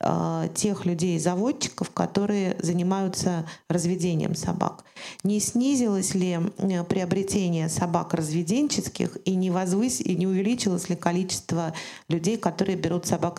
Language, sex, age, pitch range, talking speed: Russian, female, 40-59, 170-195 Hz, 110 wpm